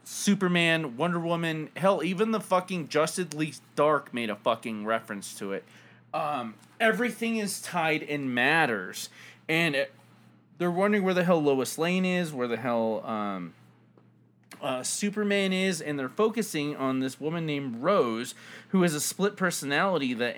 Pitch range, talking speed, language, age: 120-180 Hz, 155 wpm, English, 30-49